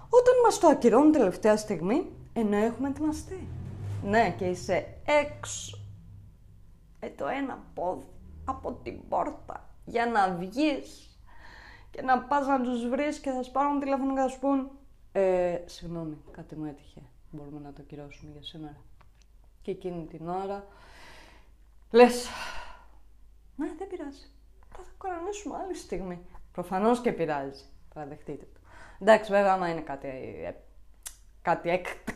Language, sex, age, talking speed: Greek, female, 20-39, 130 wpm